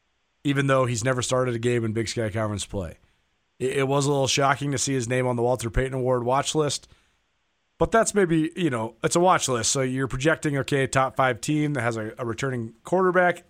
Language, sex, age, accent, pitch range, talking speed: English, male, 30-49, American, 120-160 Hz, 220 wpm